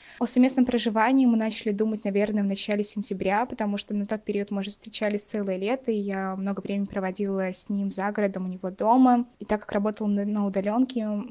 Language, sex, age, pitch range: Russian, female, 20-39, 195-220 Hz